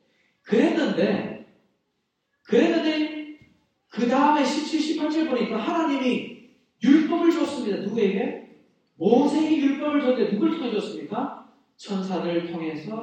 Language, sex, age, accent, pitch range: Korean, male, 40-59, native, 200-280 Hz